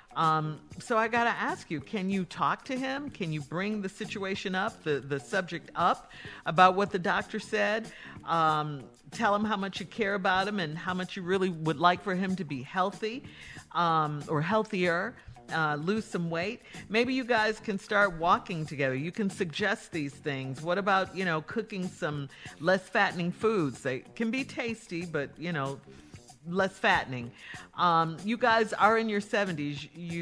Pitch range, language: 155-205 Hz, English